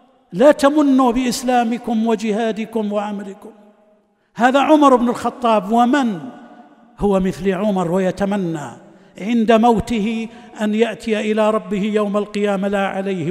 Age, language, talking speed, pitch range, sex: 60-79, Arabic, 110 wpm, 185-240 Hz, male